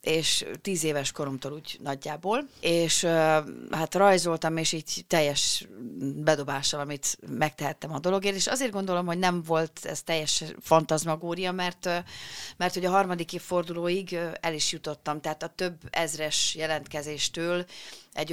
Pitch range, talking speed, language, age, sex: 150-175 Hz, 135 wpm, Hungarian, 30-49, female